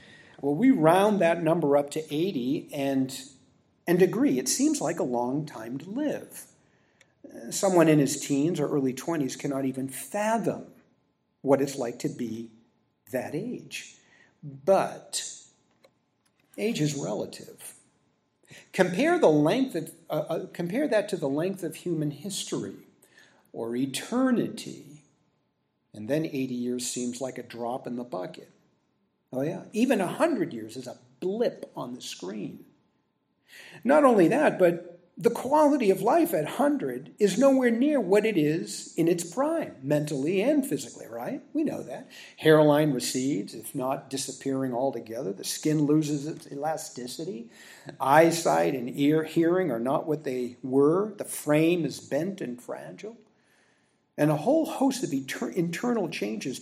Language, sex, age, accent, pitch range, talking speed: English, male, 50-69, American, 135-205 Hz, 145 wpm